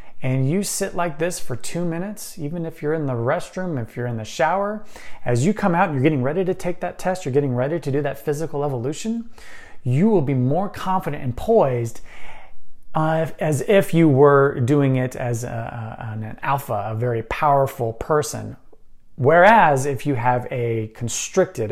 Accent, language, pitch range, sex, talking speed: American, English, 125-180 Hz, male, 180 wpm